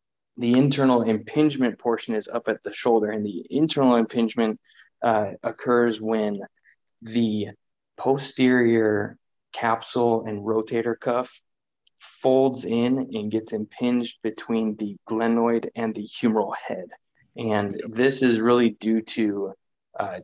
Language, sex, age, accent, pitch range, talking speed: English, male, 20-39, American, 110-120 Hz, 120 wpm